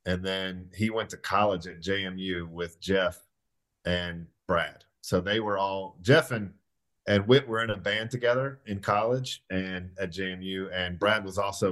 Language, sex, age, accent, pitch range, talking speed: English, male, 40-59, American, 90-105 Hz, 175 wpm